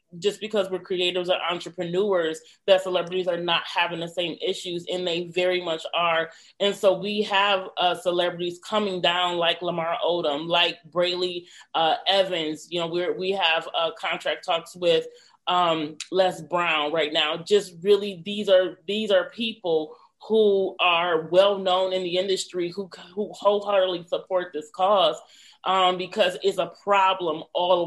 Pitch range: 170-195 Hz